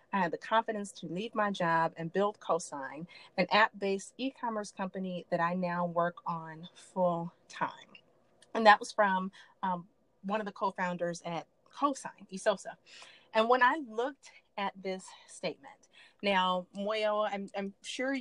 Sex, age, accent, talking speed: female, 30-49, American, 150 wpm